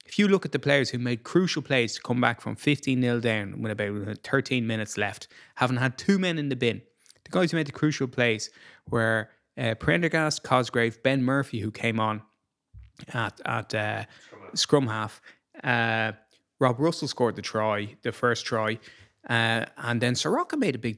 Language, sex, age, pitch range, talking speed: English, male, 20-39, 110-135 Hz, 190 wpm